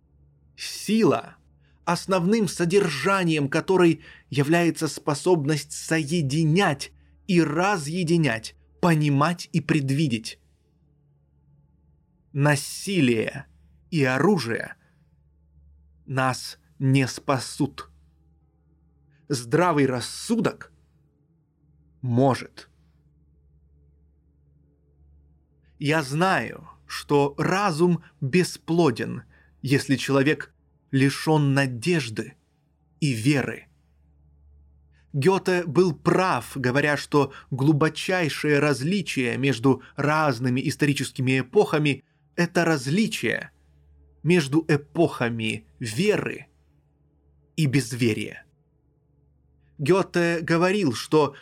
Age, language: 20-39, Russian